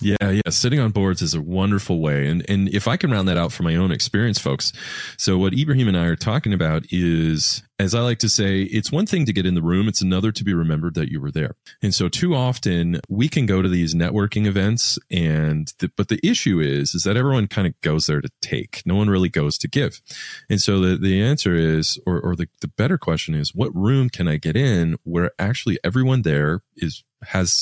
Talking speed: 240 wpm